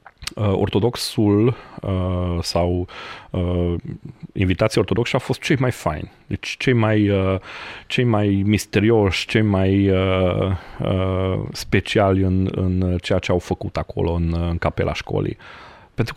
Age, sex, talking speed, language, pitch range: 30-49, male, 130 wpm, Romanian, 85-105 Hz